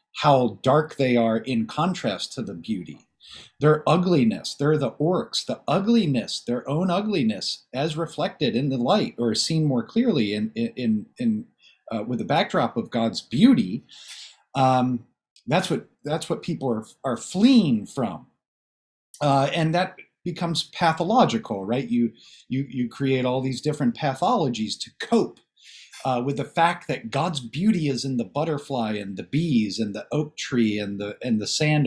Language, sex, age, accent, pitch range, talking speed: English, male, 40-59, American, 120-185 Hz, 165 wpm